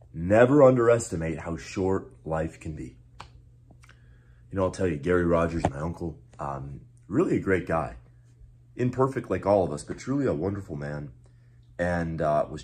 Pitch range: 85-120 Hz